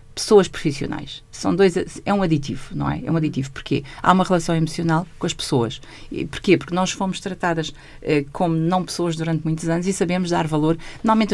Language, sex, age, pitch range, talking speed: Portuguese, female, 50-69, 150-195 Hz, 195 wpm